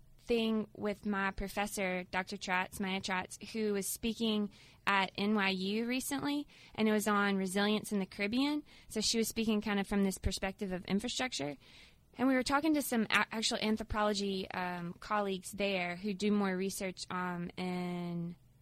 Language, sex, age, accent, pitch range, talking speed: English, female, 20-39, American, 190-230 Hz, 160 wpm